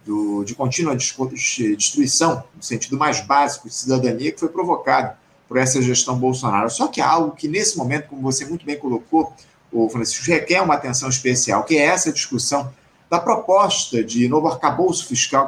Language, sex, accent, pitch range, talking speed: Portuguese, male, Brazilian, 125-160 Hz, 165 wpm